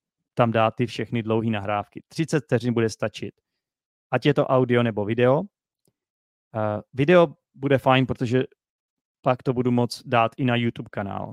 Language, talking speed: Czech, 160 wpm